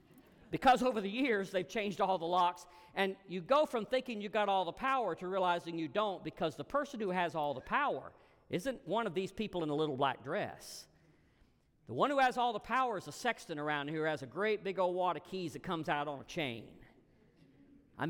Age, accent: 50-69, American